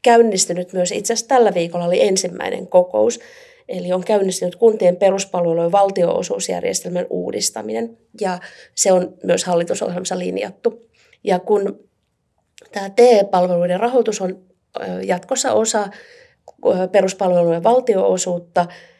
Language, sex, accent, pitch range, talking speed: Finnish, female, native, 170-200 Hz, 100 wpm